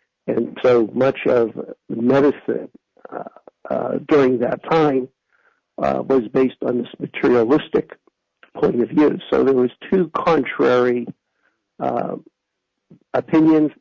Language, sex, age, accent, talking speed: English, male, 60-79, American, 115 wpm